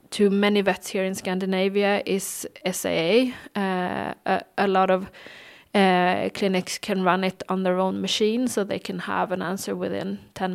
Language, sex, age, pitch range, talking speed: Danish, female, 30-49, 185-205 Hz, 170 wpm